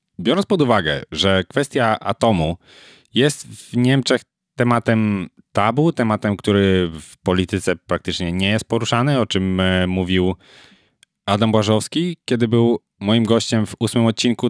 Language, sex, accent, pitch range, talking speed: Polish, male, native, 90-120 Hz, 130 wpm